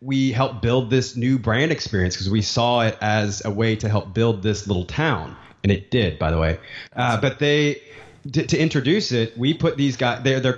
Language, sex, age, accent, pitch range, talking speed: English, male, 30-49, American, 105-130 Hz, 220 wpm